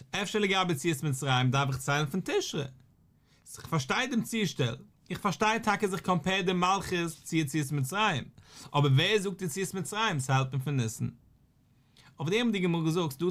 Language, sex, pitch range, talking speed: English, male, 130-185 Hz, 130 wpm